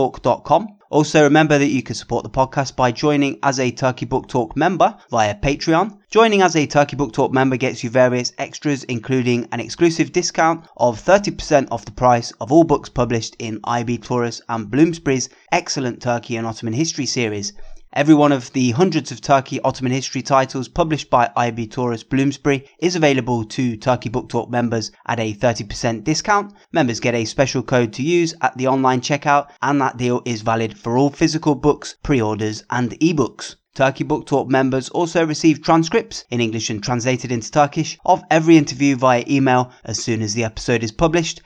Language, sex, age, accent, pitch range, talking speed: English, male, 20-39, British, 120-150 Hz, 185 wpm